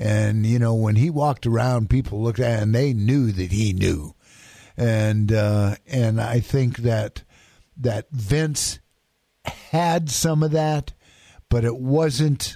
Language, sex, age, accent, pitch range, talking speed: English, male, 50-69, American, 105-135 Hz, 155 wpm